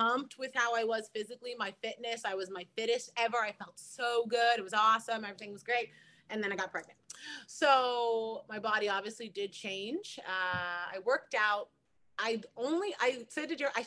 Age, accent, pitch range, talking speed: 30-49, American, 180-235 Hz, 190 wpm